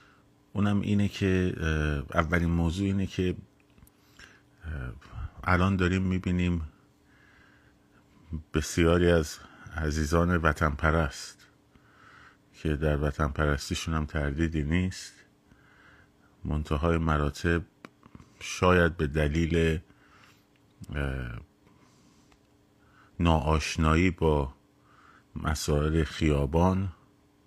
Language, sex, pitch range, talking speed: Persian, male, 75-85 Hz, 65 wpm